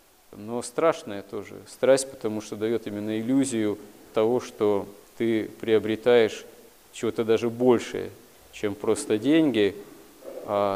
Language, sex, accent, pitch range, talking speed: Russian, male, native, 105-120 Hz, 110 wpm